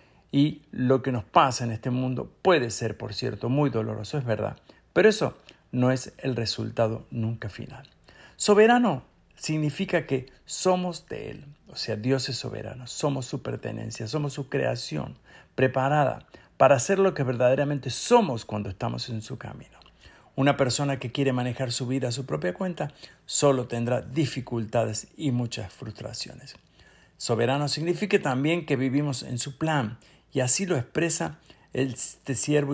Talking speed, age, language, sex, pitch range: 155 wpm, 50-69, Spanish, male, 115-145 Hz